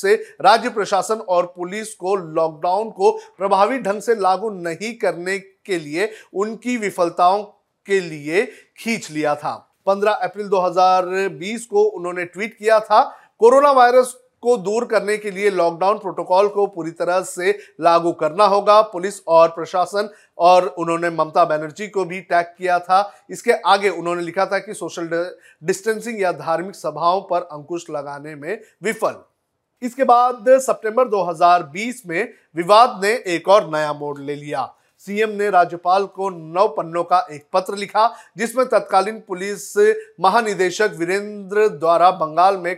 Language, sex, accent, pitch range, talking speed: Hindi, male, native, 170-210 Hz, 145 wpm